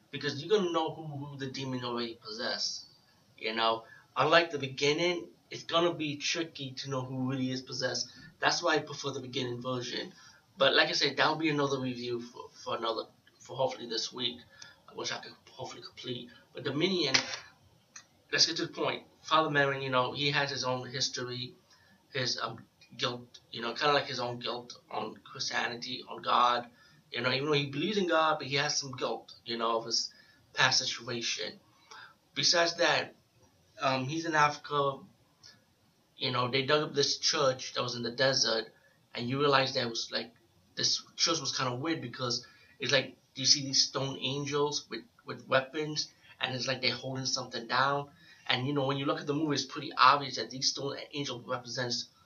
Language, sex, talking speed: English, male, 195 wpm